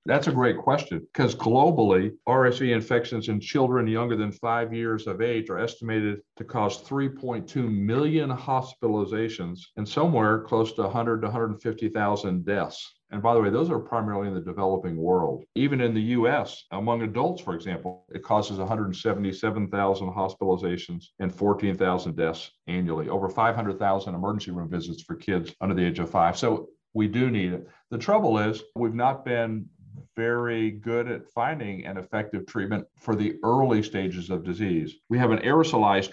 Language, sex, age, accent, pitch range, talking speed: English, male, 50-69, American, 100-115 Hz, 165 wpm